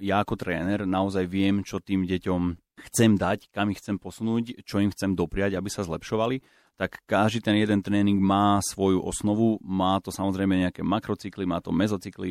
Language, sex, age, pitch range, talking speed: Slovak, male, 30-49, 95-115 Hz, 180 wpm